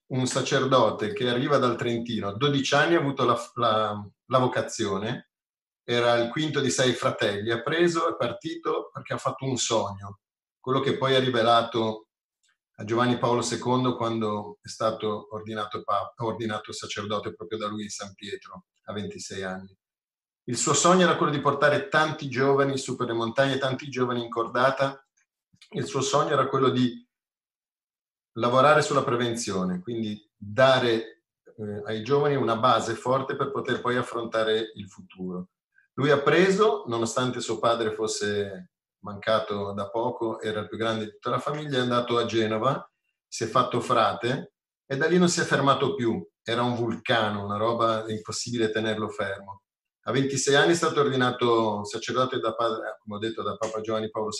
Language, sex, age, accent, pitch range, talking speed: Italian, male, 30-49, native, 110-130 Hz, 165 wpm